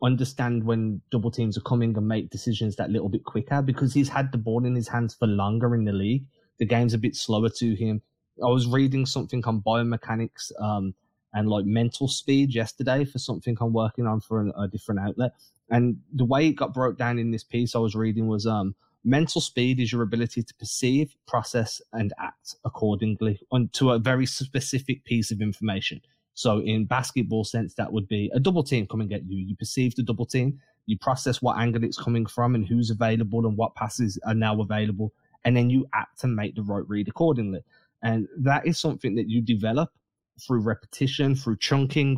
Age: 20-39